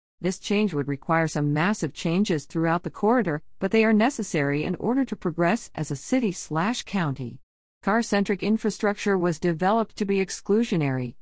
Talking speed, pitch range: 150 wpm, 150-205 Hz